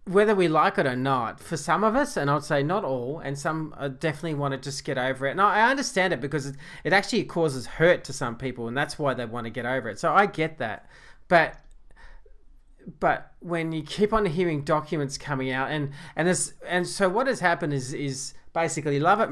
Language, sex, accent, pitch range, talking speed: English, male, Australian, 135-170 Hz, 220 wpm